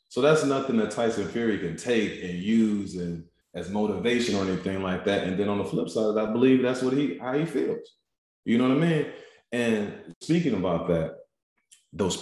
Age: 30-49